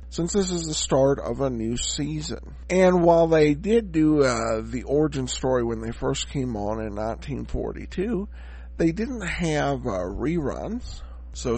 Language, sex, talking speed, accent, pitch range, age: English, male, 160 wpm, American, 115-175 Hz, 50-69